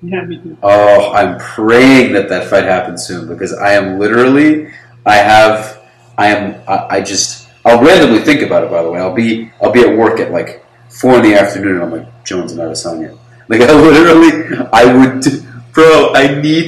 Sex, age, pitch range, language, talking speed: male, 30-49, 105-125 Hz, English, 190 wpm